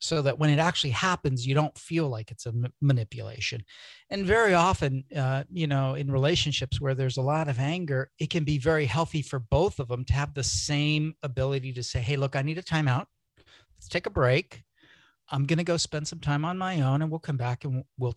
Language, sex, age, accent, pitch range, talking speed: English, male, 40-59, American, 130-155 Hz, 230 wpm